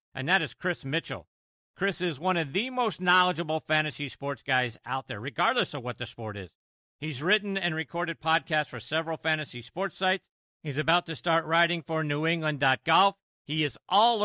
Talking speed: 180 wpm